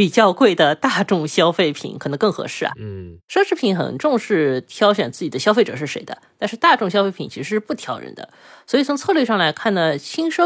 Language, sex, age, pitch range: Chinese, female, 20-39, 145-230 Hz